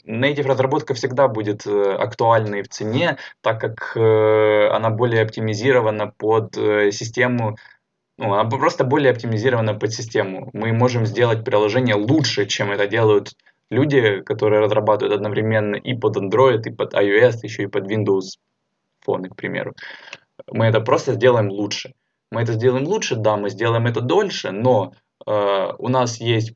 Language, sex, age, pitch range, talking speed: Ukrainian, male, 20-39, 105-125 Hz, 150 wpm